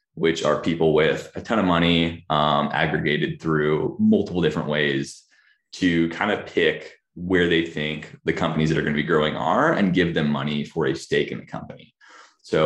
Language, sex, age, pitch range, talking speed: English, male, 20-39, 75-90 Hz, 190 wpm